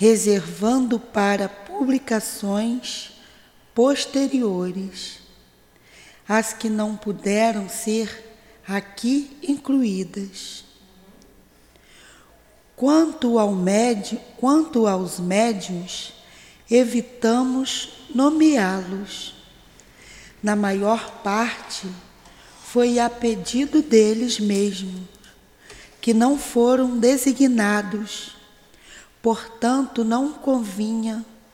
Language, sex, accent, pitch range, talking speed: Portuguese, female, Brazilian, 205-245 Hz, 65 wpm